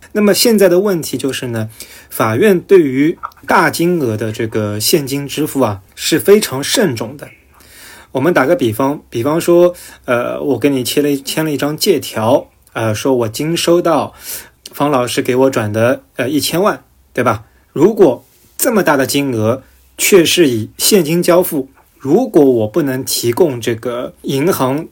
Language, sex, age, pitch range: Chinese, male, 20-39, 115-155 Hz